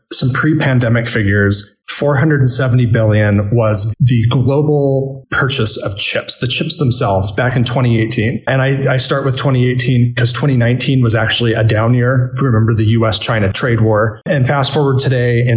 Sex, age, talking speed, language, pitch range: male, 30-49, 170 wpm, English, 110-135 Hz